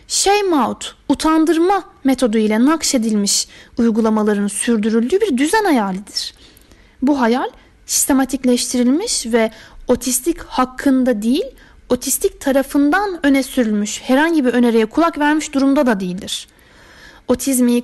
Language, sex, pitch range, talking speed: Turkish, female, 245-345 Hz, 105 wpm